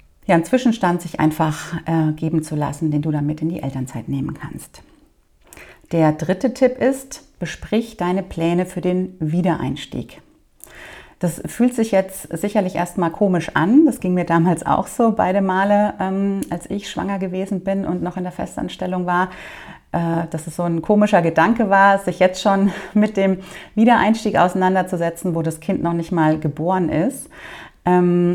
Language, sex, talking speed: German, female, 170 wpm